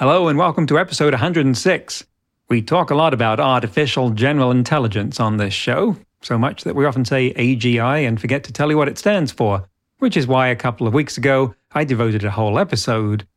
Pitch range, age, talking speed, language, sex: 115-145 Hz, 40-59, 205 wpm, English, male